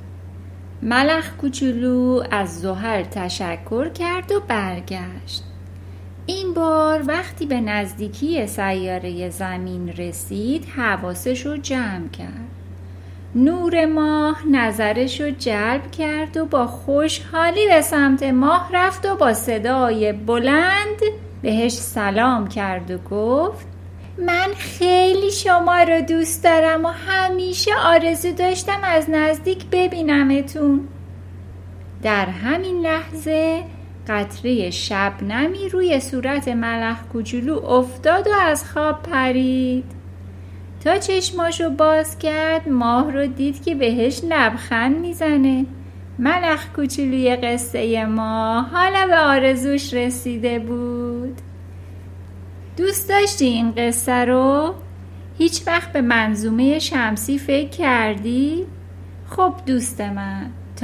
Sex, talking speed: female, 105 wpm